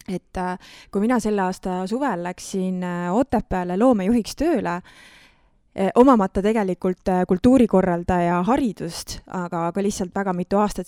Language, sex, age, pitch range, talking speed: English, female, 20-39, 175-225 Hz, 115 wpm